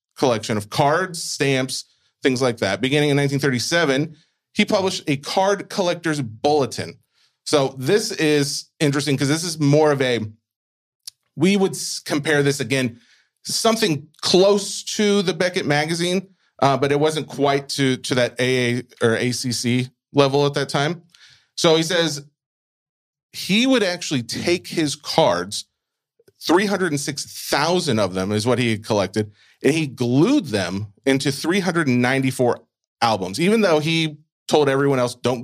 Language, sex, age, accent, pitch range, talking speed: English, male, 30-49, American, 120-155 Hz, 140 wpm